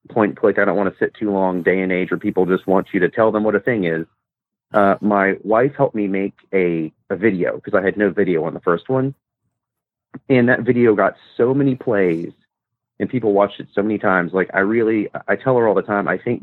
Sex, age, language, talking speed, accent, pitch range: male, 30-49, English, 245 wpm, American, 95-110 Hz